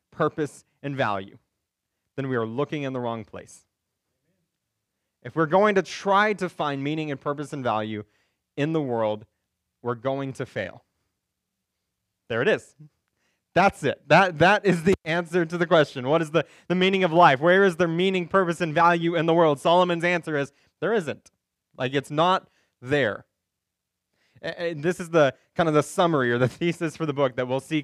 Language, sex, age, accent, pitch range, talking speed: English, male, 20-39, American, 120-170 Hz, 185 wpm